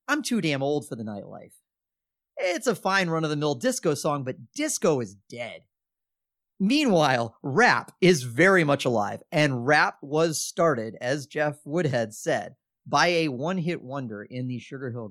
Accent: American